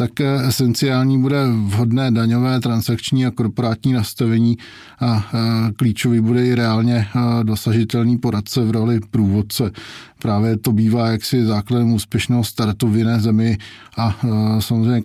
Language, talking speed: Czech, 120 wpm